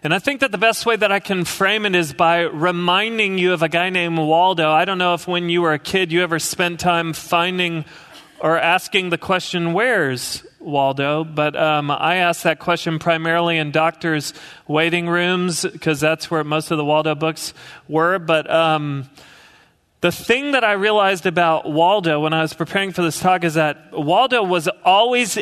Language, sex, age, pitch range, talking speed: English, male, 30-49, 155-195 Hz, 195 wpm